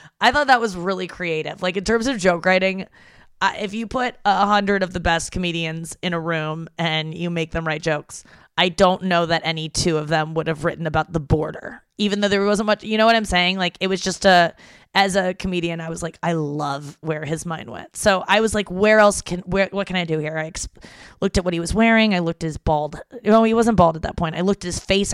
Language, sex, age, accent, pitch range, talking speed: English, female, 20-39, American, 165-200 Hz, 265 wpm